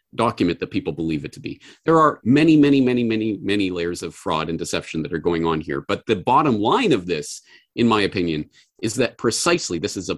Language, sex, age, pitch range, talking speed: English, male, 40-59, 95-155 Hz, 230 wpm